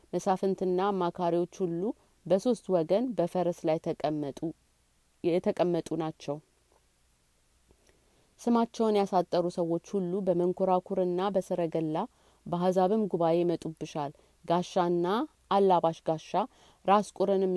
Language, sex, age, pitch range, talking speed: Amharic, female, 30-49, 160-195 Hz, 80 wpm